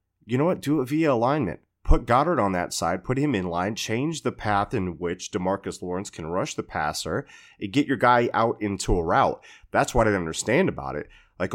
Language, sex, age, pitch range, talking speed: English, male, 30-49, 90-105 Hz, 220 wpm